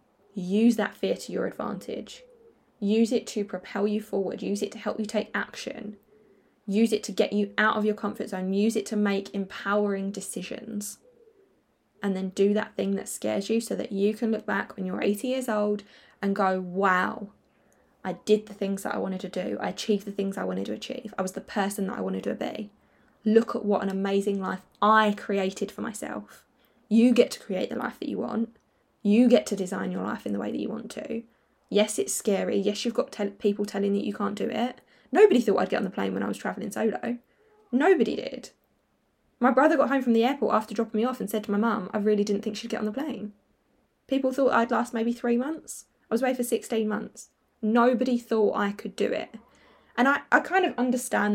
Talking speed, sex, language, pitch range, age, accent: 225 wpm, female, English, 200-240 Hz, 10-29, British